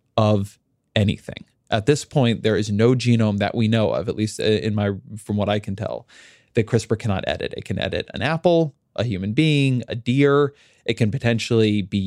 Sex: male